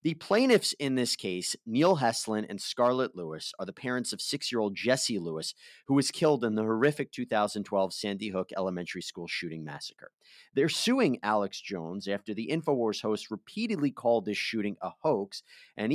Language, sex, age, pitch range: English, male, 30-49, 100-140 Hz